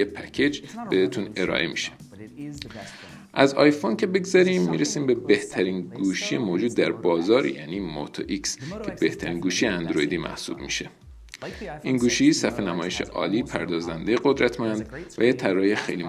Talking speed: 130 wpm